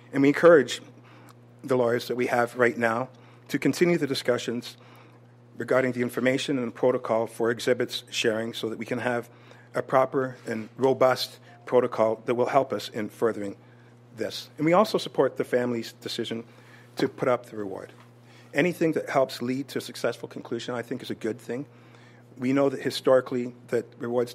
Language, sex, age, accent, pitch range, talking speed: English, male, 50-69, American, 120-130 Hz, 175 wpm